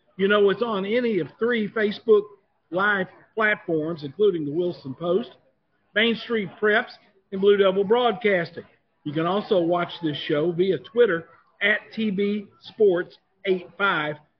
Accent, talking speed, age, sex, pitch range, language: American, 140 wpm, 50-69, male, 165-205 Hz, English